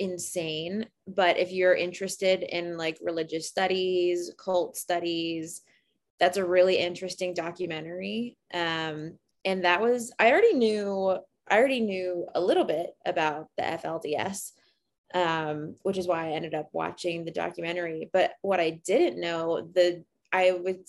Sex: female